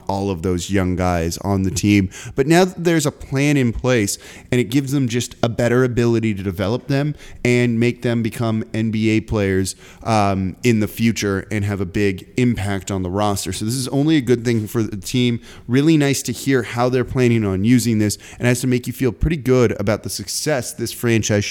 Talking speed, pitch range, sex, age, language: 215 wpm, 105-135 Hz, male, 30-49, English